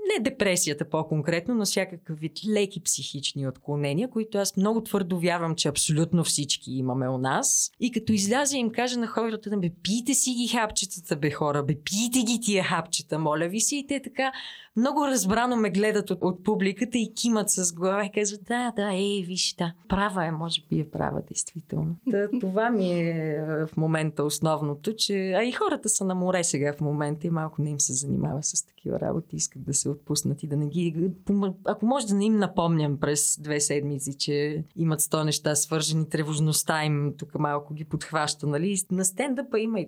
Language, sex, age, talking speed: Bulgarian, female, 20-39, 190 wpm